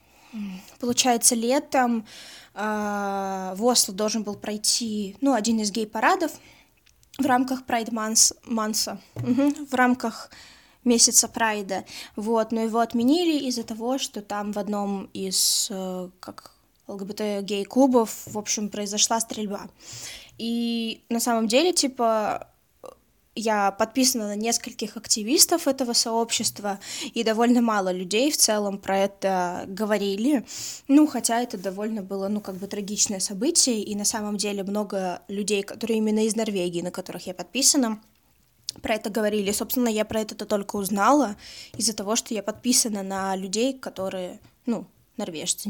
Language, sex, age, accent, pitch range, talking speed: Russian, female, 20-39, native, 205-245 Hz, 130 wpm